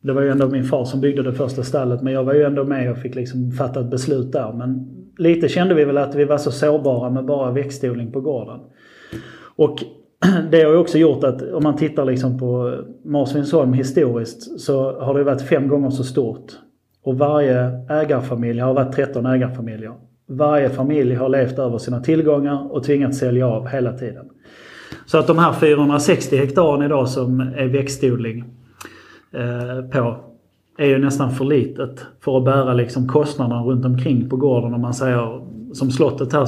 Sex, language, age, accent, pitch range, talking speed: male, English, 30-49, Swedish, 125-145 Hz, 180 wpm